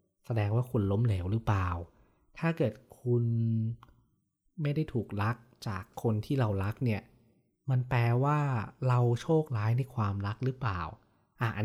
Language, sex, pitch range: Thai, male, 105-130 Hz